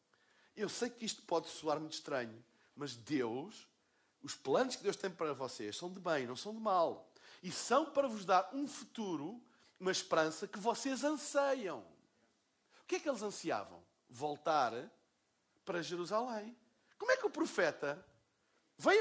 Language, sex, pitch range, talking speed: Portuguese, male, 165-235 Hz, 160 wpm